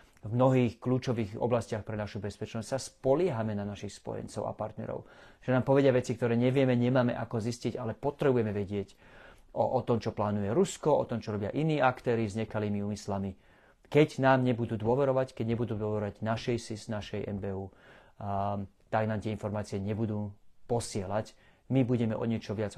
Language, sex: Slovak, male